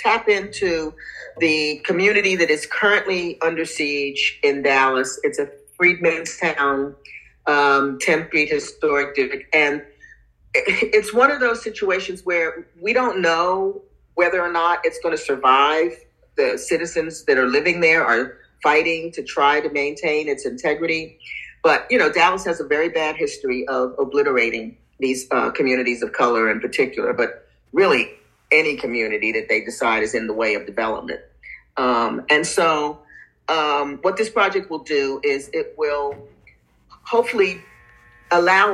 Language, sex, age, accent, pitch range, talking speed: English, female, 50-69, American, 145-220 Hz, 150 wpm